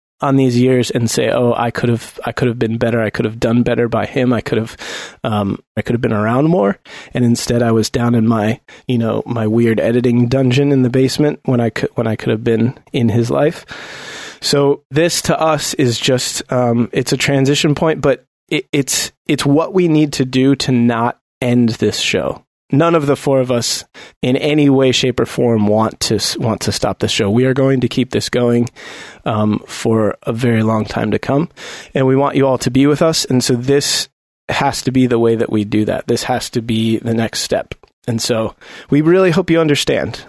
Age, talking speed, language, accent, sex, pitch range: 20-39, 225 wpm, English, American, male, 115-135 Hz